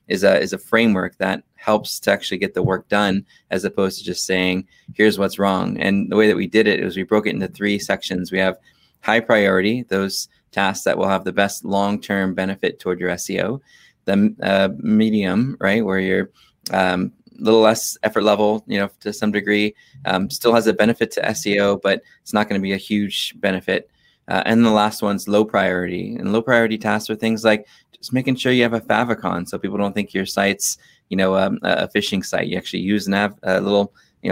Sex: male